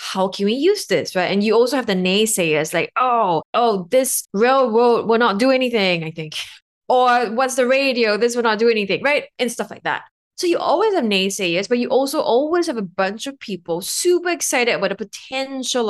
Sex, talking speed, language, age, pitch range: female, 210 wpm, English, 20-39, 190-260 Hz